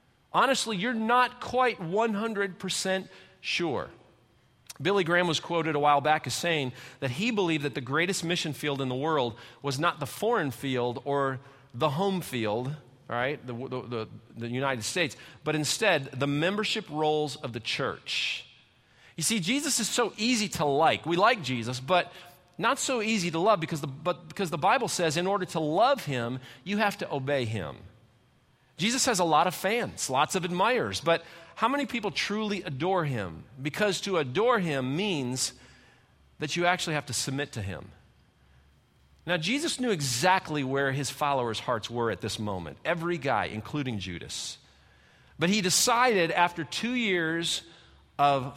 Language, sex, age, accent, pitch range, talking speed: English, male, 40-59, American, 130-200 Hz, 170 wpm